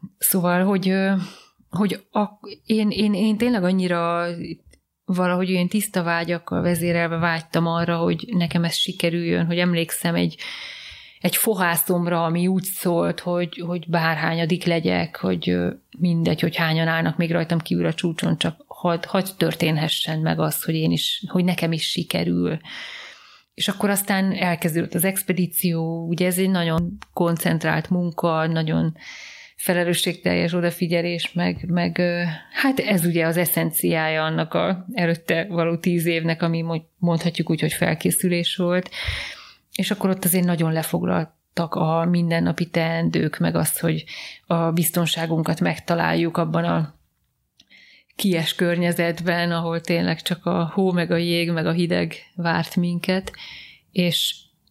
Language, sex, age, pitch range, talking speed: Hungarian, female, 30-49, 165-180 Hz, 135 wpm